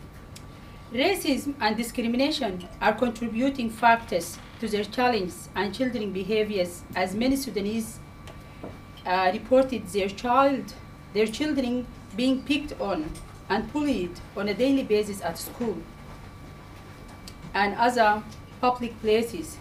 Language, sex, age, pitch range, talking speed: English, female, 40-59, 200-255 Hz, 110 wpm